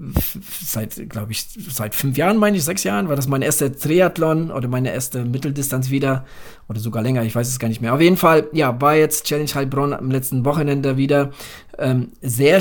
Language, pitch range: German, 125-145 Hz